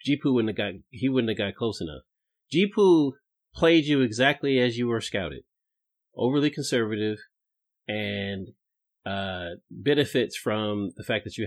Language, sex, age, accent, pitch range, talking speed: English, male, 30-49, American, 110-150 Hz, 145 wpm